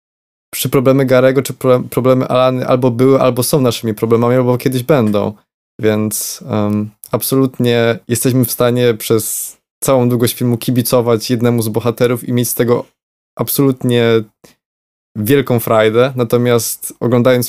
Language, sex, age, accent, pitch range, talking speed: Polish, male, 20-39, native, 115-130 Hz, 130 wpm